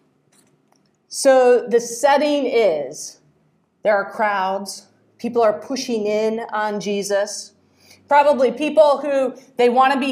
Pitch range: 230-290 Hz